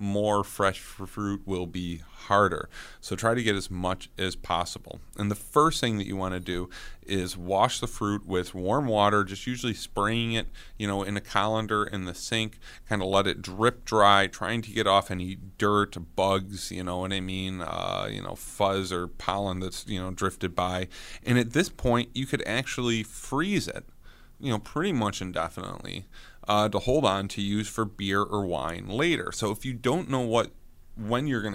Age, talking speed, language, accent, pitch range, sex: 30-49, 200 wpm, English, American, 95-110 Hz, male